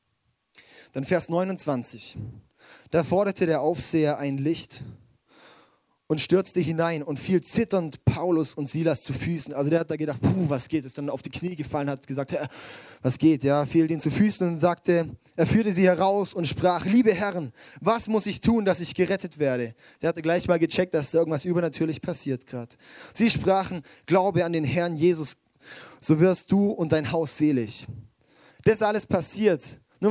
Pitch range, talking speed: 145-185 Hz, 185 wpm